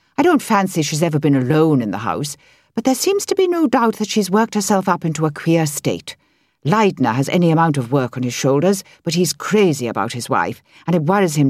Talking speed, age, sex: 235 wpm, 60-79, female